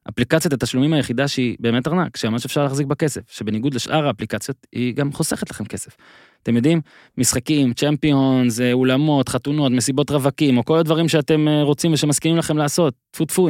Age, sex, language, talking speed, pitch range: 20-39, male, Hebrew, 165 wpm, 120-165 Hz